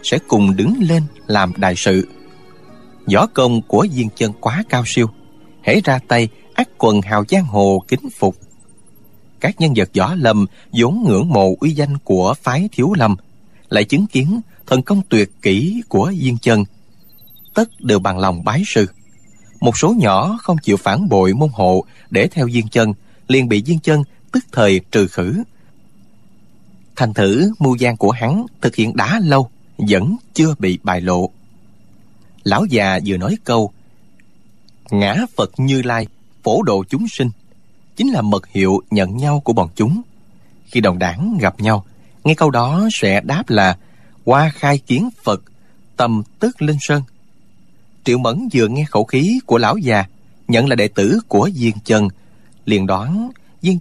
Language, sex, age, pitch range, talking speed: Vietnamese, male, 20-39, 105-150 Hz, 170 wpm